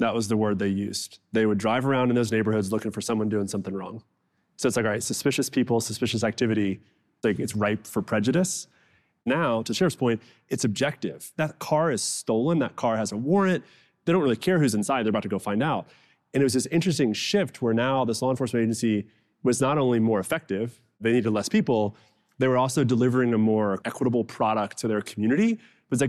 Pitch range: 110-135 Hz